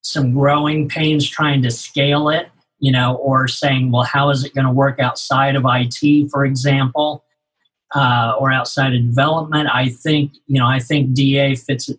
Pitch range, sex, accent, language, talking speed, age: 130-145 Hz, male, American, English, 180 wpm, 50-69